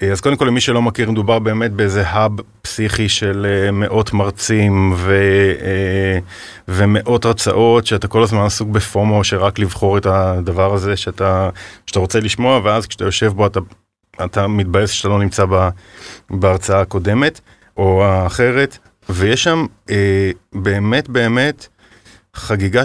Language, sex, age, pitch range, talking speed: Hebrew, male, 30-49, 100-115 Hz, 140 wpm